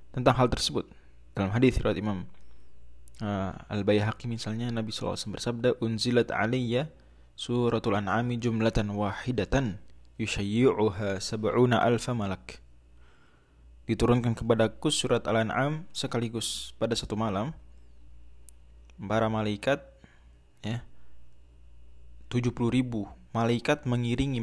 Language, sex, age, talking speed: Indonesian, male, 20-39, 90 wpm